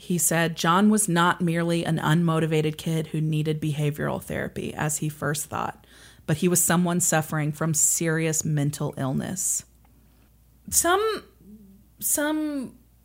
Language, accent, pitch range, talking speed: English, American, 160-200 Hz, 130 wpm